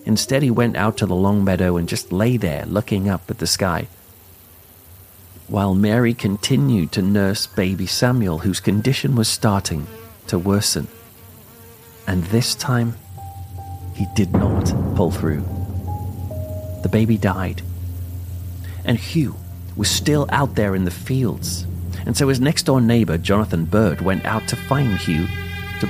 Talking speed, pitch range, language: 150 wpm, 90-115 Hz, English